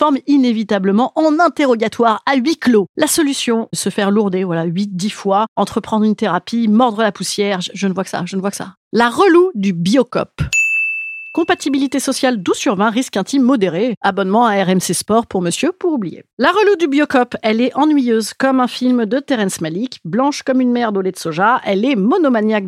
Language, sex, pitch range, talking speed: French, female, 205-305 Hz, 195 wpm